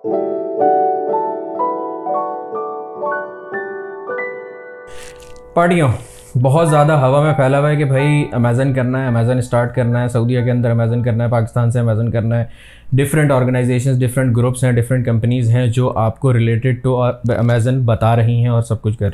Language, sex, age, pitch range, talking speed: Urdu, male, 20-39, 115-135 Hz, 155 wpm